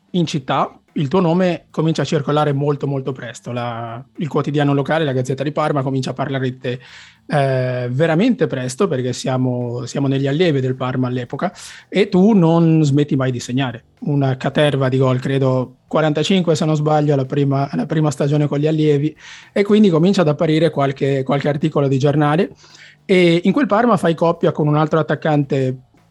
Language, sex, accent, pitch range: Italian, male, native, 130-165 Hz